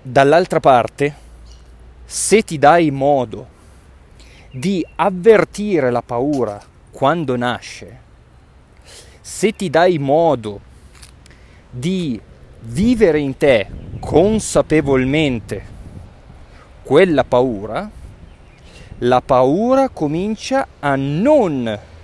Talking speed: 75 wpm